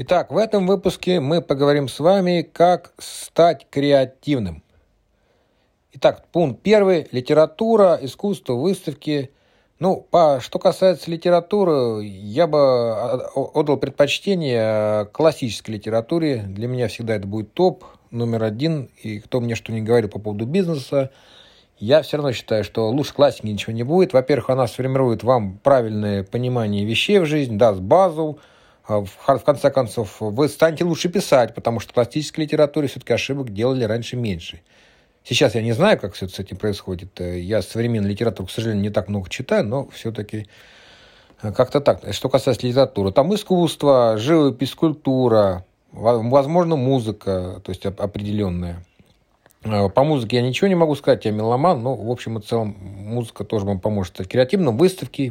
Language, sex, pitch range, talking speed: Russian, male, 105-150 Hz, 150 wpm